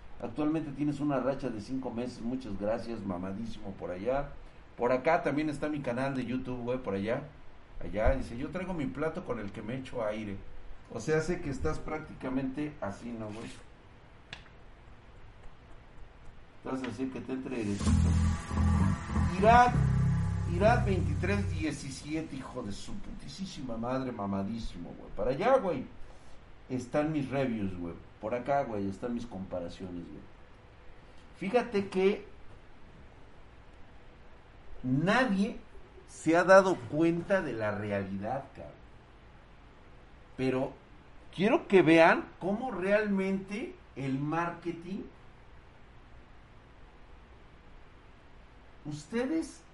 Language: Spanish